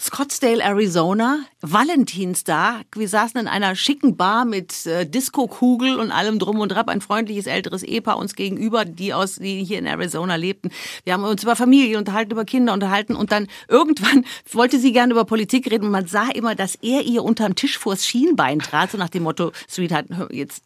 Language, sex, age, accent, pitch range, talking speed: German, female, 50-69, German, 195-245 Hz, 195 wpm